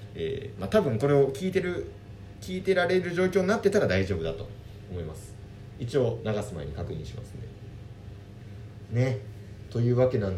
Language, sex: Japanese, male